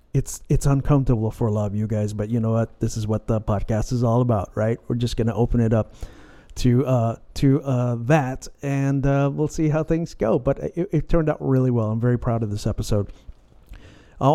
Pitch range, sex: 115-145 Hz, male